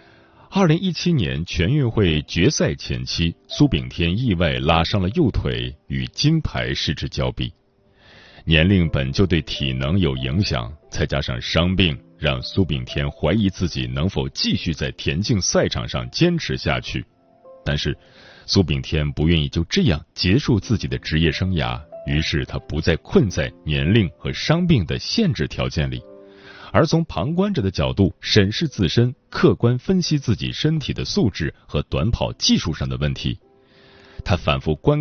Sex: male